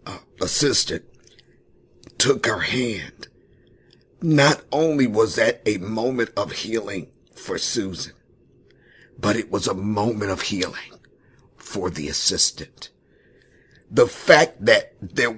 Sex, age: male, 50-69